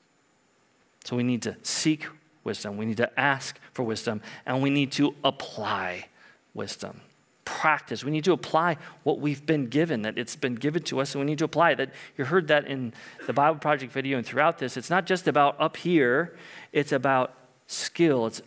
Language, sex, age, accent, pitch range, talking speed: English, male, 40-59, American, 120-160 Hz, 195 wpm